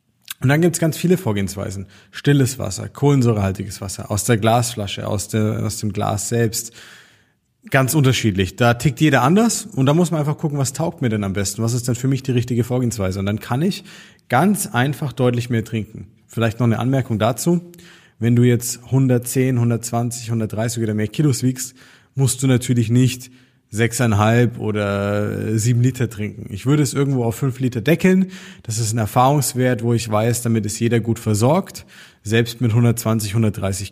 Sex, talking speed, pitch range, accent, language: male, 180 wpm, 105-135 Hz, German, German